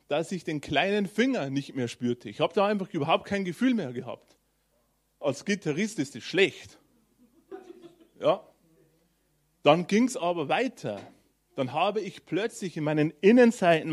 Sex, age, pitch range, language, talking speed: male, 30-49, 140-205 Hz, German, 150 wpm